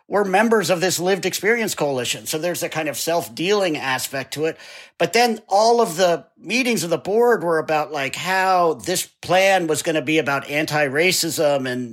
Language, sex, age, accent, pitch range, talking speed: English, male, 50-69, American, 140-185 Hz, 200 wpm